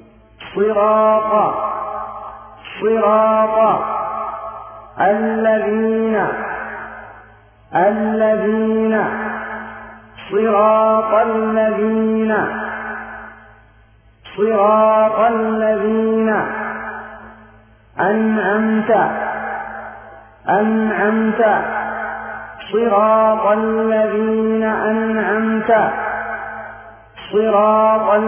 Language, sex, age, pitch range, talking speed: Filipino, male, 50-69, 205-220 Hz, 30 wpm